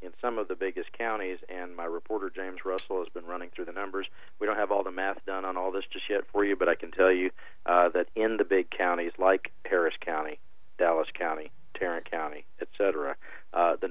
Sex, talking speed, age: male, 225 wpm, 40-59